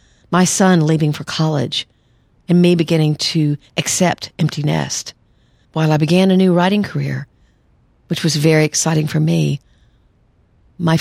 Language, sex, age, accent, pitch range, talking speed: English, female, 50-69, American, 145-175 Hz, 140 wpm